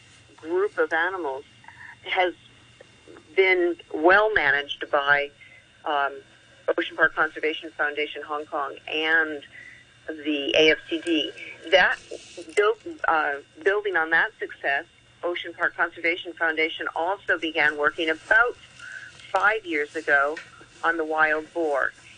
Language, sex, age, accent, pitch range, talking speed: English, female, 50-69, American, 155-235 Hz, 110 wpm